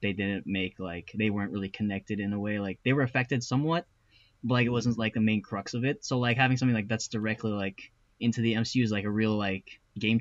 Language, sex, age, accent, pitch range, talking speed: English, male, 10-29, American, 100-130 Hz, 255 wpm